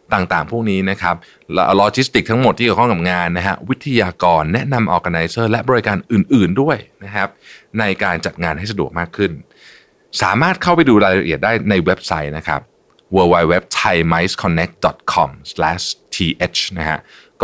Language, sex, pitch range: Thai, male, 80-115 Hz